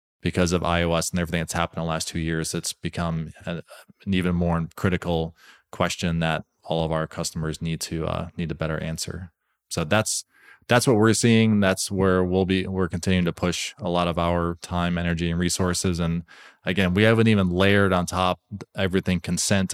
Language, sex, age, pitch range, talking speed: English, male, 20-39, 85-100 Hz, 190 wpm